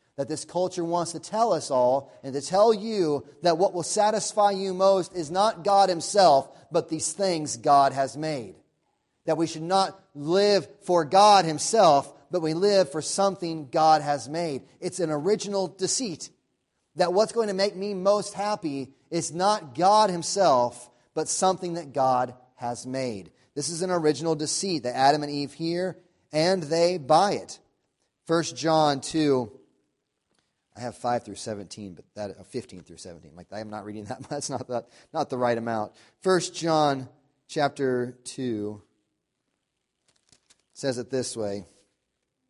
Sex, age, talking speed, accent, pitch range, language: male, 30-49, 160 wpm, American, 130-175 Hz, English